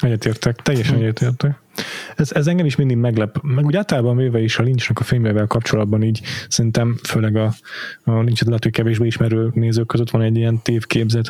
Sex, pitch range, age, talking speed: male, 105-125 Hz, 20-39, 175 wpm